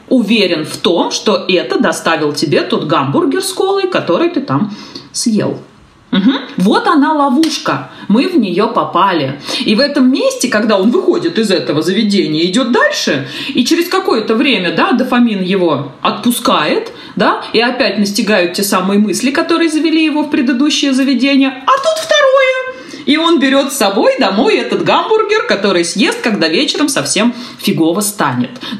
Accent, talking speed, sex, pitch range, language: native, 150 wpm, female, 185-270 Hz, Russian